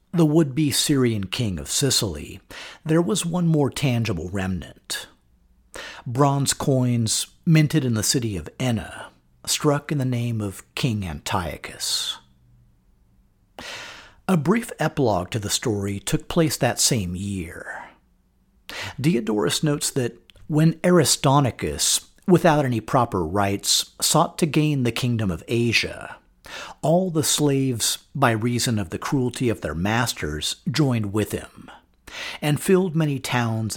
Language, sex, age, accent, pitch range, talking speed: English, male, 50-69, American, 100-150 Hz, 130 wpm